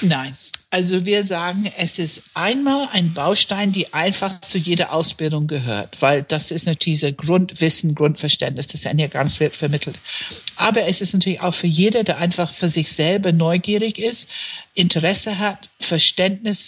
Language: German